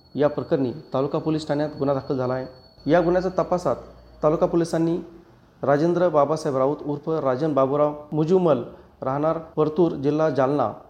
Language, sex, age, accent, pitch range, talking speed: Marathi, male, 40-59, native, 135-160 Hz, 140 wpm